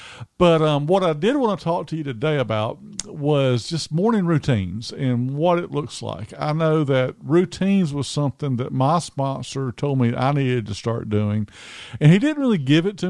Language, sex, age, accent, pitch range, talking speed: English, male, 50-69, American, 125-155 Hz, 200 wpm